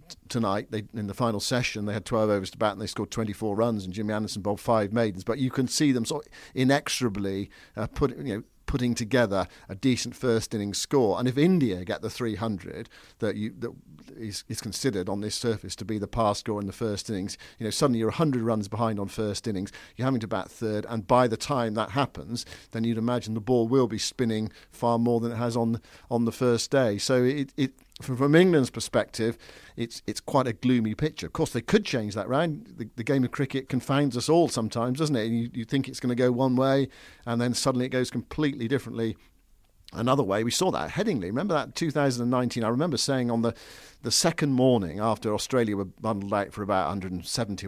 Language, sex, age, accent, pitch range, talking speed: English, male, 50-69, British, 105-130 Hz, 215 wpm